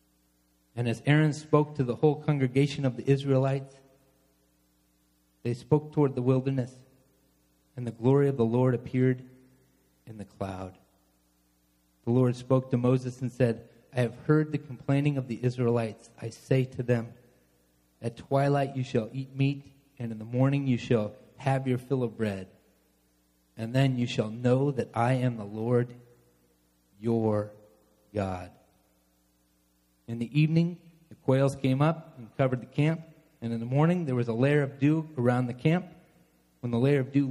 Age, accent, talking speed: 30-49, American, 165 wpm